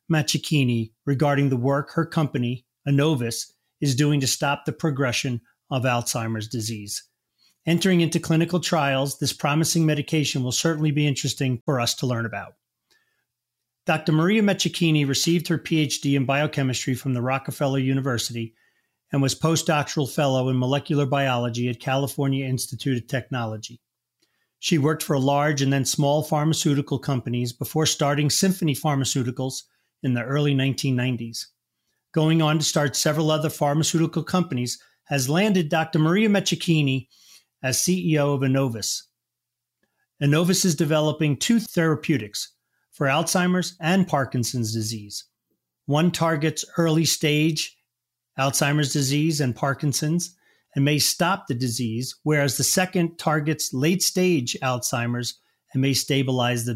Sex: male